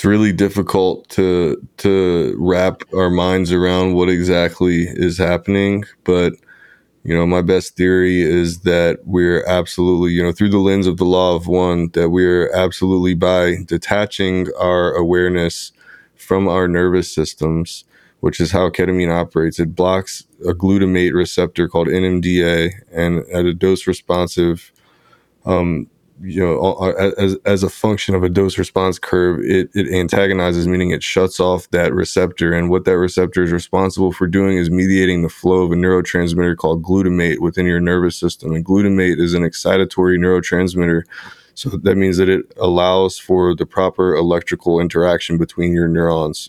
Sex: male